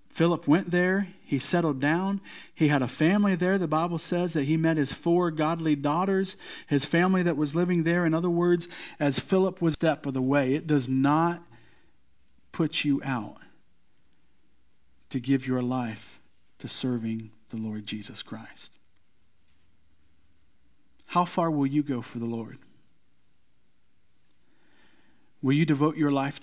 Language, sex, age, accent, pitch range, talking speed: English, male, 40-59, American, 130-160 Hz, 150 wpm